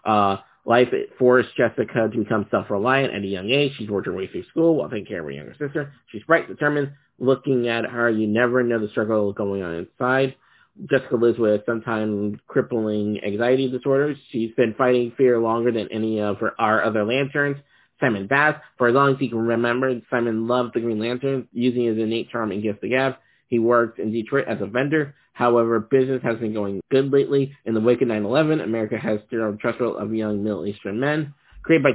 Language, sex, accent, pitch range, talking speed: English, male, American, 110-140 Hz, 205 wpm